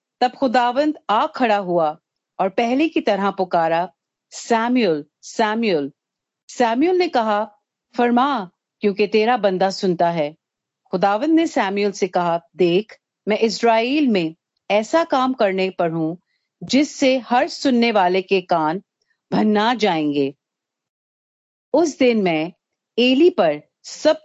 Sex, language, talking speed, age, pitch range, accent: female, Hindi, 120 wpm, 50-69, 180-245 Hz, native